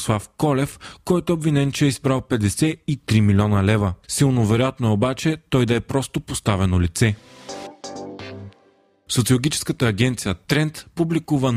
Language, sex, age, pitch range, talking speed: Bulgarian, male, 30-49, 110-140 Hz, 125 wpm